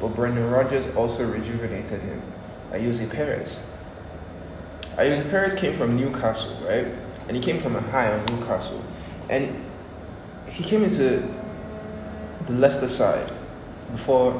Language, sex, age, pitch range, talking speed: English, male, 20-39, 105-125 Hz, 125 wpm